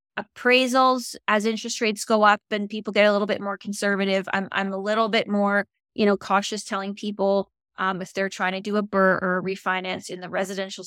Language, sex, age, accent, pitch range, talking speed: English, female, 20-39, American, 190-215 Hz, 215 wpm